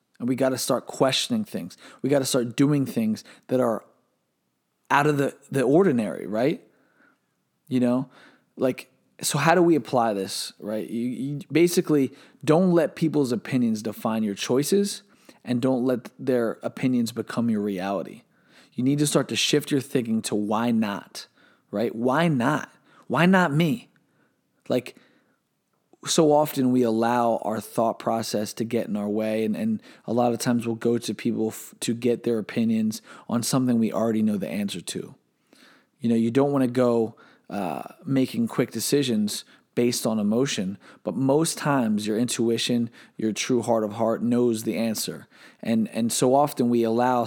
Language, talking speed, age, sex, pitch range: English, 170 wpm, 20-39, male, 115-145 Hz